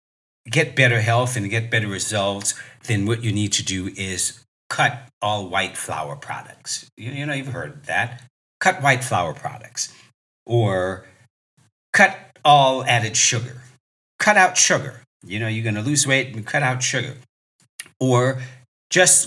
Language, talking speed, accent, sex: English, 155 wpm, American, male